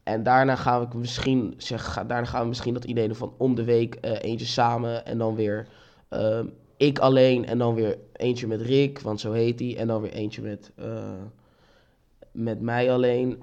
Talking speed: 185 wpm